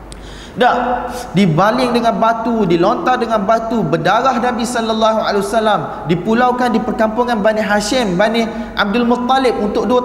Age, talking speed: 30-49, 130 wpm